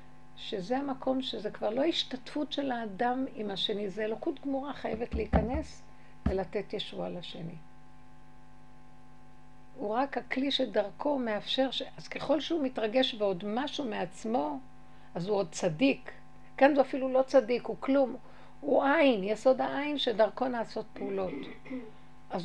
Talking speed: 135 wpm